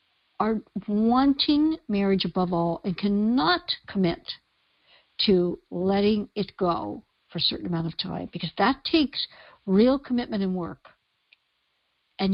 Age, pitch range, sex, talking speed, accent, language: 60-79, 170-215 Hz, female, 125 wpm, American, English